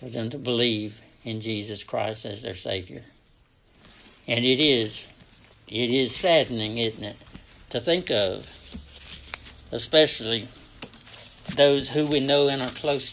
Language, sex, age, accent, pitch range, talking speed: English, male, 60-79, American, 115-140 Hz, 135 wpm